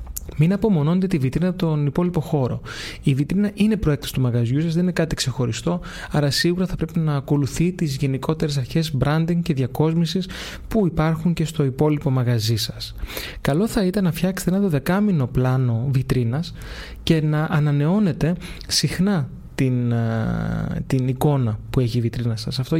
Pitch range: 135-170 Hz